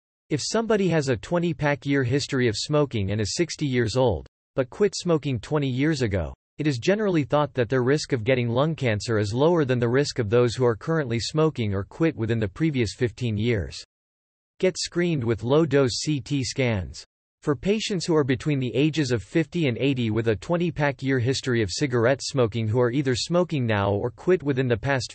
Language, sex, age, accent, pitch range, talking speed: English, male, 40-59, American, 115-150 Hz, 195 wpm